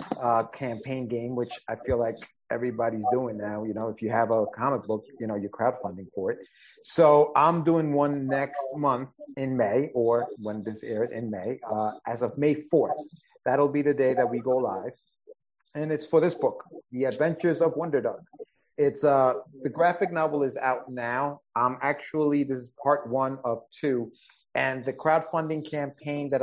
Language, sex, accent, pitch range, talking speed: English, male, American, 125-155 Hz, 185 wpm